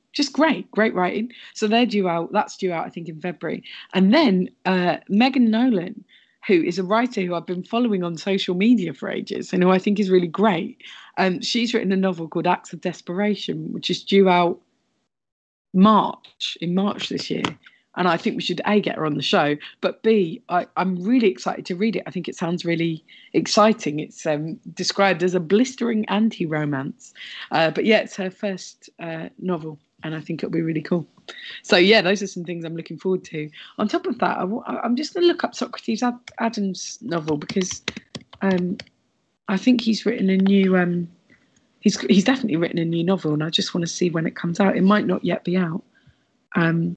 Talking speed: 210 wpm